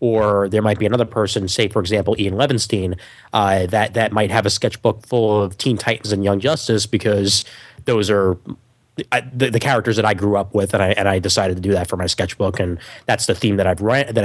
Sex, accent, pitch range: male, American, 105-125 Hz